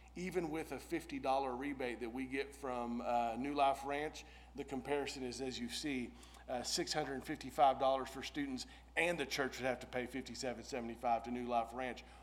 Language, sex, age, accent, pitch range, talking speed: English, male, 40-59, American, 125-155 Hz, 170 wpm